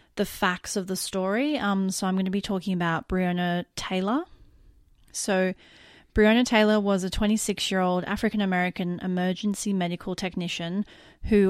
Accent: Australian